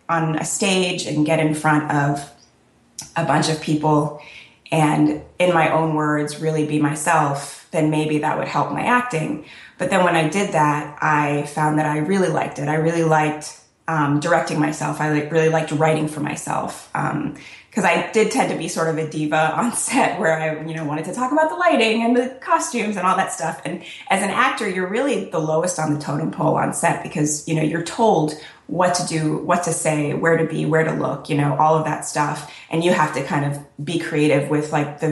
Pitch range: 150-170 Hz